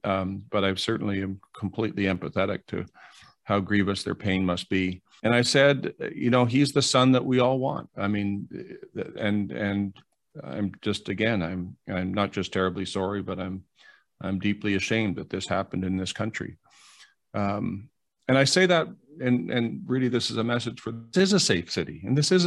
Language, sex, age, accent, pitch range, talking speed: English, male, 40-59, American, 95-125 Hz, 190 wpm